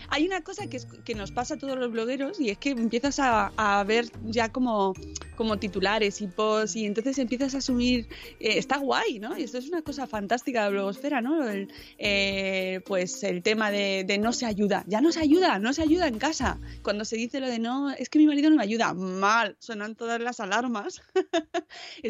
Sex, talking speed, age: female, 215 wpm, 20-39